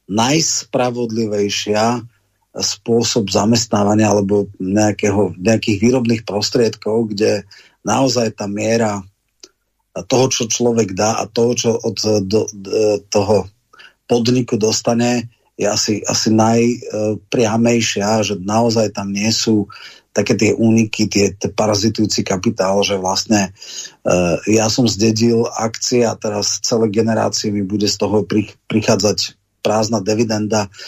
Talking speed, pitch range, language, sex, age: 115 wpm, 105-120 Hz, Slovak, male, 30-49